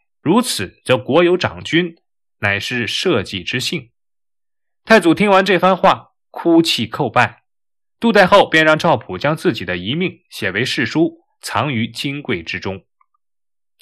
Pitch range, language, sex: 120-190 Hz, Chinese, male